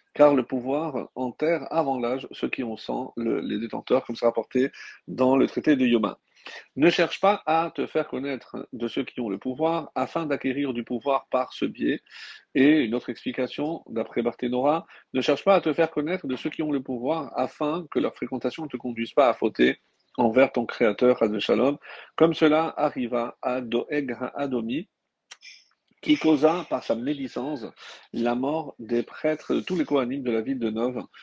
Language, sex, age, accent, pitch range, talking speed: French, male, 50-69, French, 120-155 Hz, 190 wpm